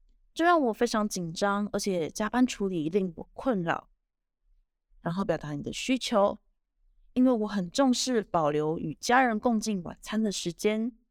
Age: 20-39